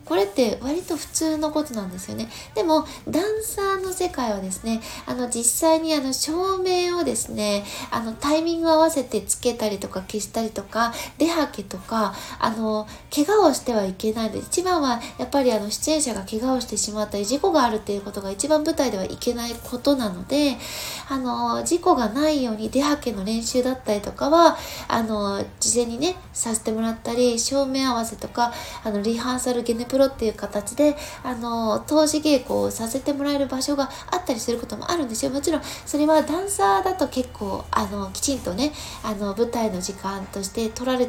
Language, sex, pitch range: Japanese, female, 215-295 Hz